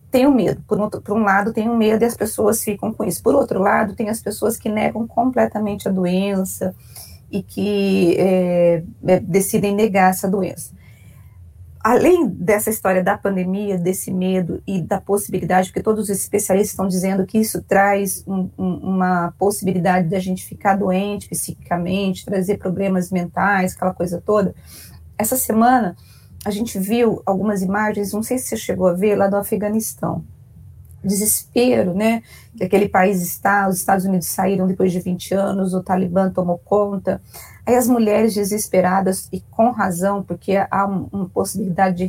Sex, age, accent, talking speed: female, 30-49, Brazilian, 165 wpm